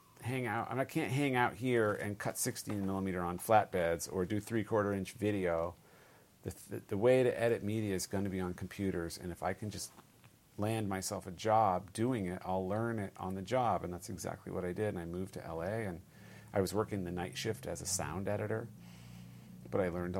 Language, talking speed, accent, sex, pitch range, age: English, 220 wpm, American, male, 95-115 Hz, 40-59